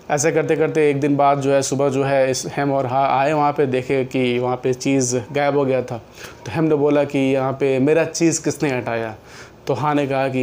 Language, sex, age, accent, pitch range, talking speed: Hindi, male, 30-49, native, 130-155 Hz, 245 wpm